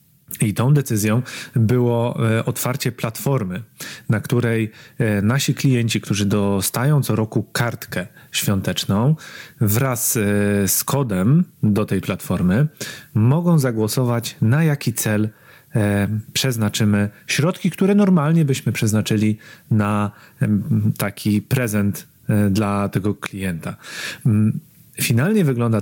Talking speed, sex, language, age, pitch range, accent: 95 wpm, male, Polish, 30-49, 110-135 Hz, native